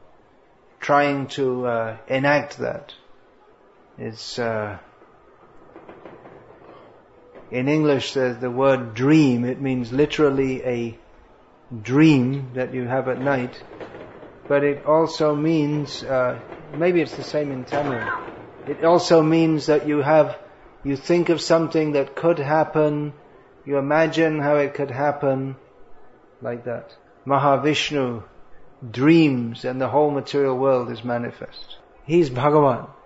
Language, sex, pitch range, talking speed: English, male, 130-150 Hz, 120 wpm